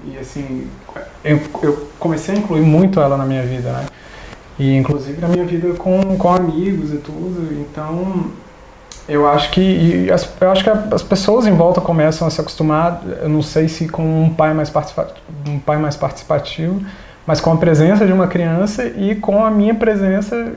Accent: Brazilian